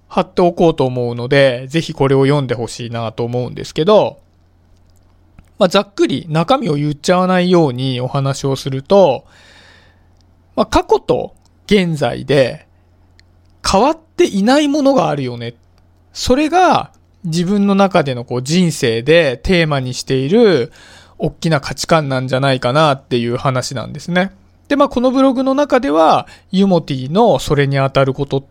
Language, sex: Japanese, male